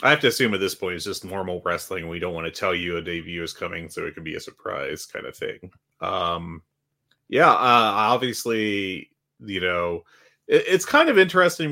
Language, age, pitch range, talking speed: English, 30-49, 90-125 Hz, 205 wpm